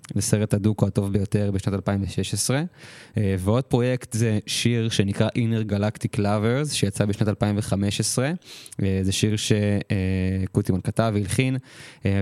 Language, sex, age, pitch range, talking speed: Hebrew, male, 20-39, 100-115 Hz, 130 wpm